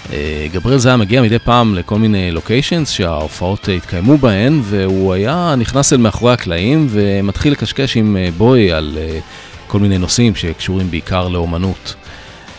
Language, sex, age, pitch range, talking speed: English, male, 30-49, 85-125 Hz, 130 wpm